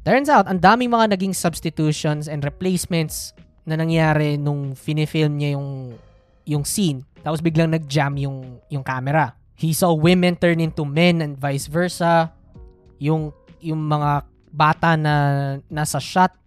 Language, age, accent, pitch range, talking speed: Filipino, 20-39, native, 145-180 Hz, 140 wpm